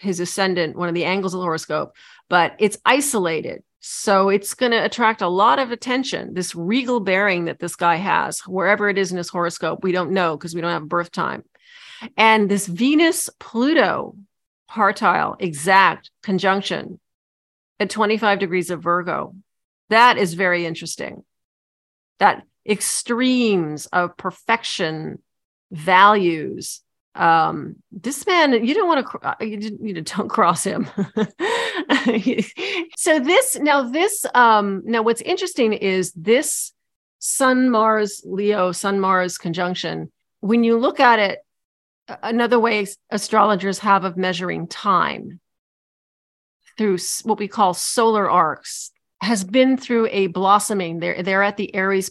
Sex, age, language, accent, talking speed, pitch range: female, 40-59, English, American, 140 wpm, 180-235 Hz